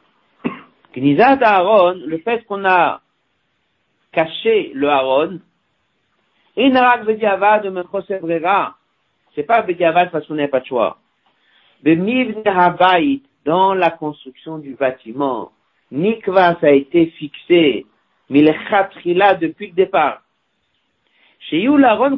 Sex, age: male, 60-79